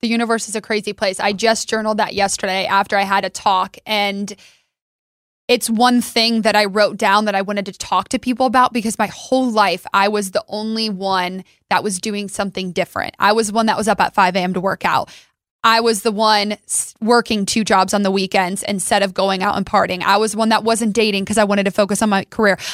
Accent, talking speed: American, 230 wpm